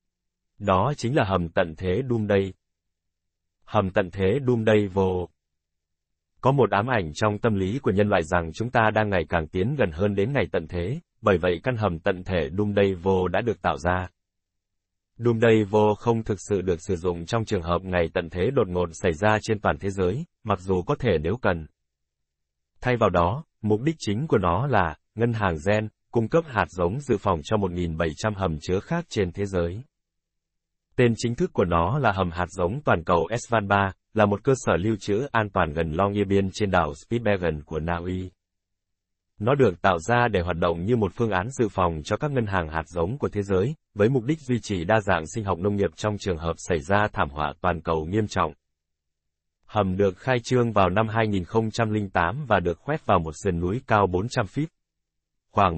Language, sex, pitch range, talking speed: Vietnamese, male, 85-110 Hz, 210 wpm